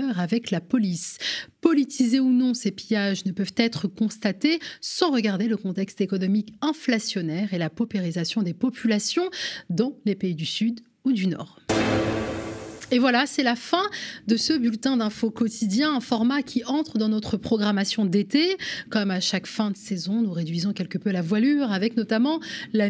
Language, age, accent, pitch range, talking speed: French, 30-49, French, 195-260 Hz, 170 wpm